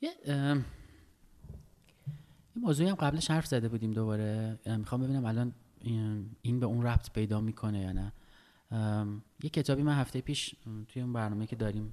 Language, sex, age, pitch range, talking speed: Persian, male, 30-49, 105-125 Hz, 165 wpm